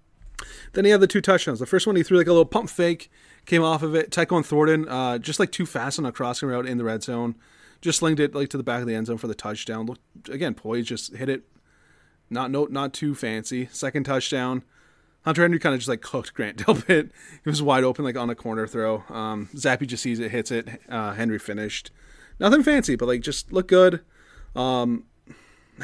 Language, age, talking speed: English, 20-39, 230 wpm